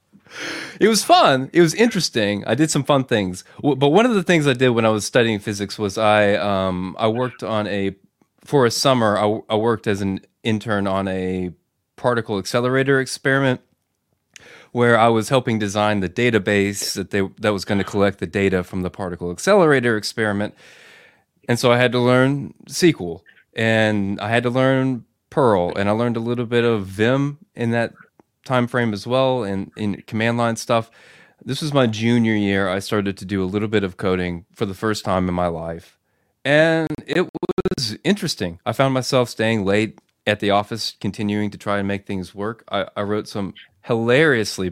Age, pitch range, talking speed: 20-39, 100-130 Hz, 190 wpm